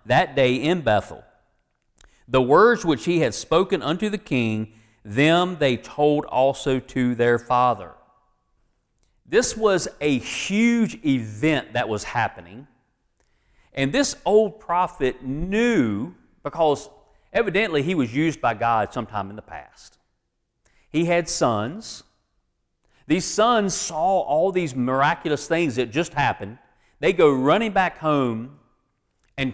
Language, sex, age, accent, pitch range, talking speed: English, male, 40-59, American, 120-175 Hz, 130 wpm